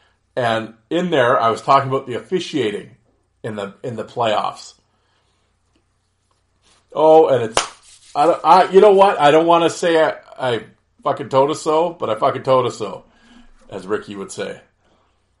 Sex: male